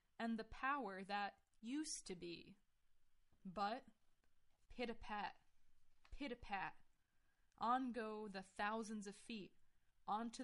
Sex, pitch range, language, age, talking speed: female, 205-255 Hz, English, 20-39, 100 wpm